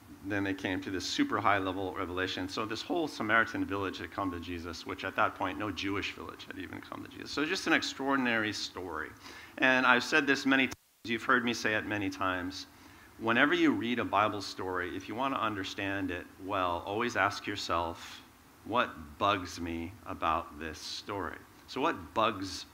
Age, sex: 50-69, male